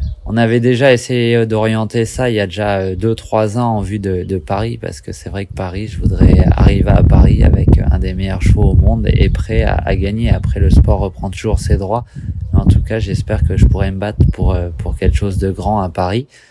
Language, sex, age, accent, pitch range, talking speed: French, male, 20-39, French, 95-110 Hz, 235 wpm